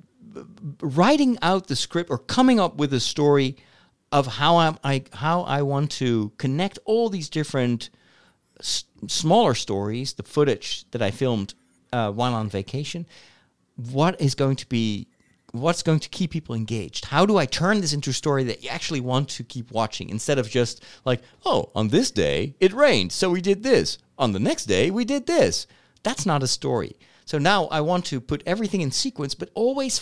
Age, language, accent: 40-59, English, American